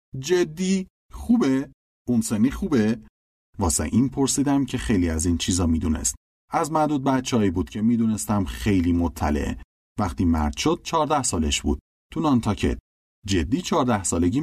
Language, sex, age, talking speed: Persian, male, 30-49, 135 wpm